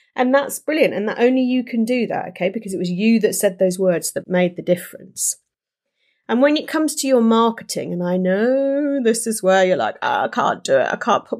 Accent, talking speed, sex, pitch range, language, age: British, 235 wpm, female, 180-215 Hz, English, 30-49